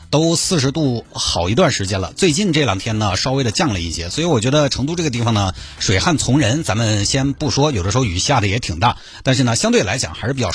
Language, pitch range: Chinese, 100-155 Hz